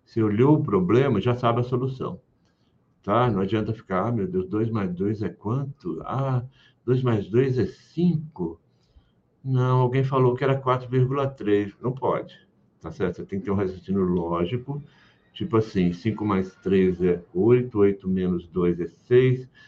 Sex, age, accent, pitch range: male, 60-79, Brazilian, 95-135 Hz